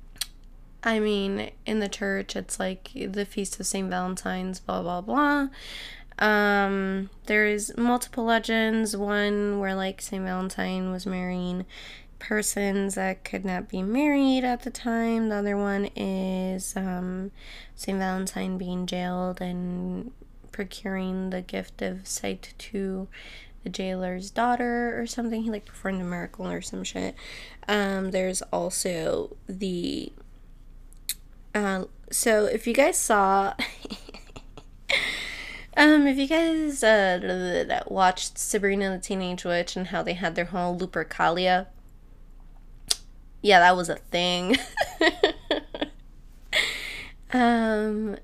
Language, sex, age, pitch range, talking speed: English, female, 20-39, 180-215 Hz, 125 wpm